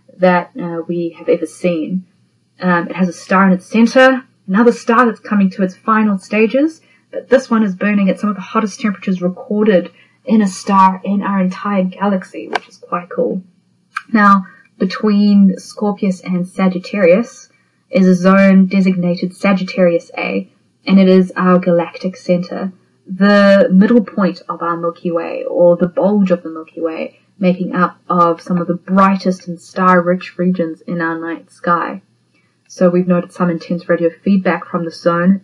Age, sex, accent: 30-49, female, Australian